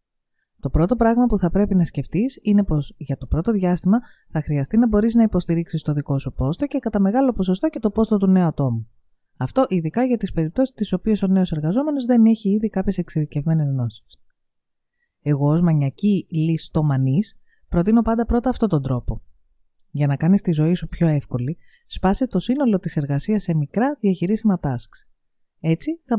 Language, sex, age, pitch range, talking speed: Greek, female, 30-49, 150-220 Hz, 180 wpm